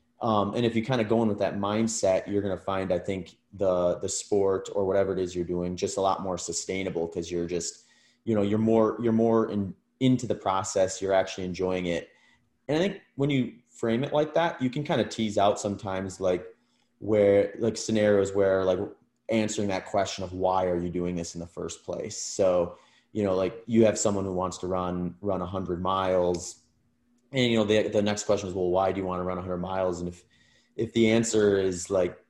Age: 30-49